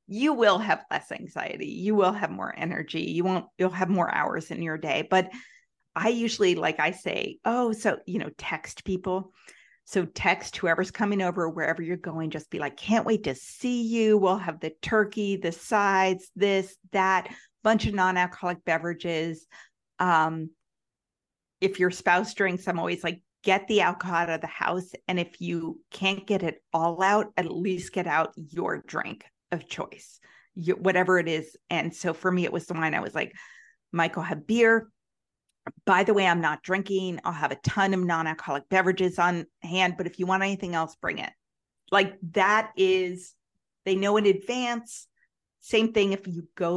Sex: female